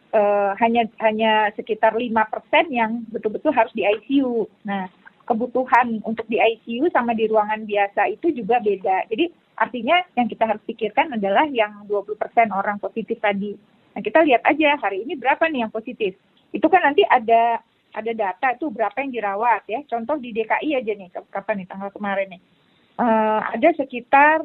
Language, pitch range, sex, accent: Indonesian, 215-265 Hz, female, native